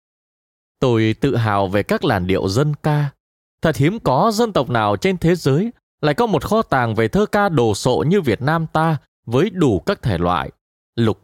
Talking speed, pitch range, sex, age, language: 205 wpm, 105-160 Hz, male, 20-39, Vietnamese